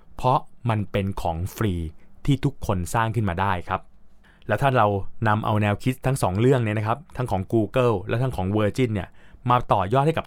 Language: Thai